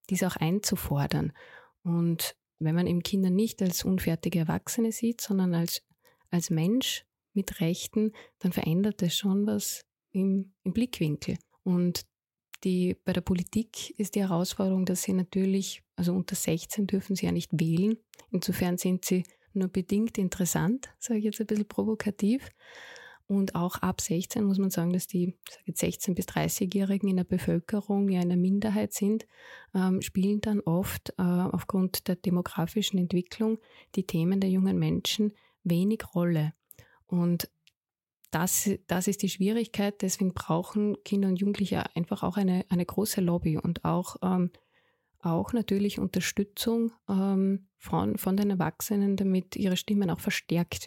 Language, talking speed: German, 150 wpm